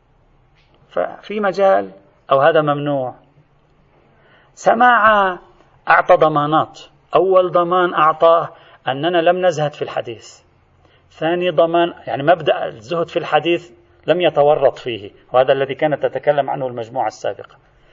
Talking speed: 110 wpm